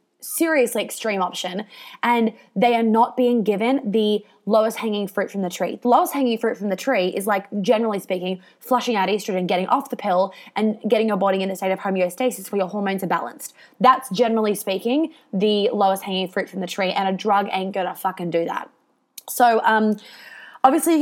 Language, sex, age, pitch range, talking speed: English, female, 20-39, 195-235 Hz, 200 wpm